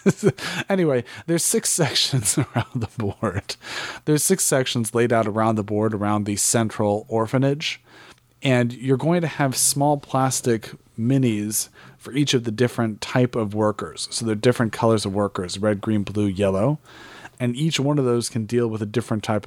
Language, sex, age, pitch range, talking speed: English, male, 30-49, 110-135 Hz, 175 wpm